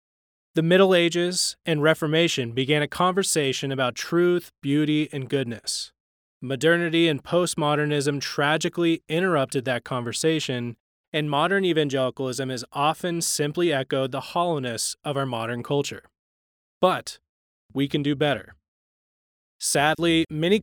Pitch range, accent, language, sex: 130-165 Hz, American, English, male